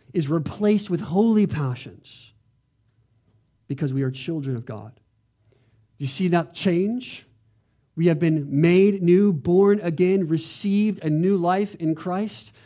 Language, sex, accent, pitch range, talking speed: English, male, American, 120-165 Hz, 135 wpm